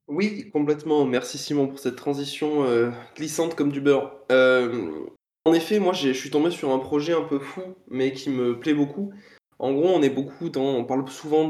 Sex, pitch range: male, 130-170 Hz